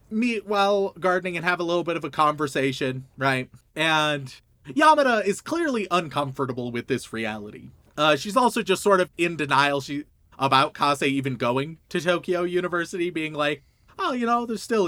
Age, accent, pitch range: 30-49, American, 135-185 Hz